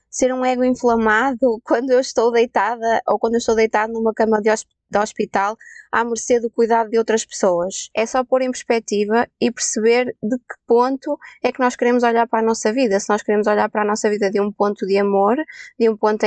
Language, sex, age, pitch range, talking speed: Portuguese, female, 20-39, 220-260 Hz, 220 wpm